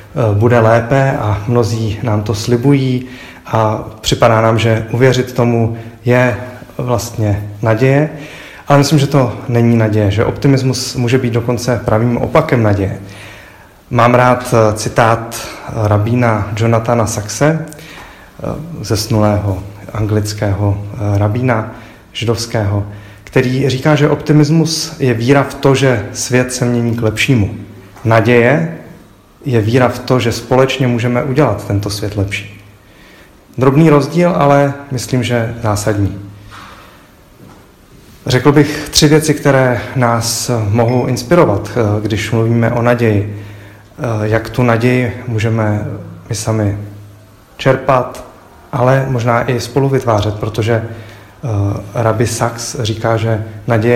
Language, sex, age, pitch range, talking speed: Czech, male, 30-49, 105-130 Hz, 115 wpm